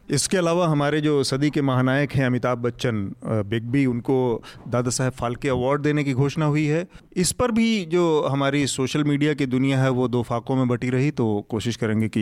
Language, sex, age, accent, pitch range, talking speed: Hindi, male, 40-59, native, 120-145 Hz, 205 wpm